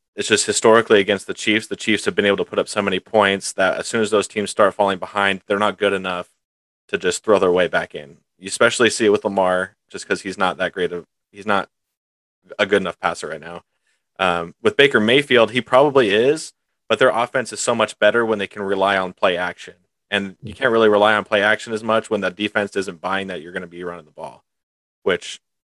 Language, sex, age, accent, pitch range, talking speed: English, male, 30-49, American, 95-105 Hz, 240 wpm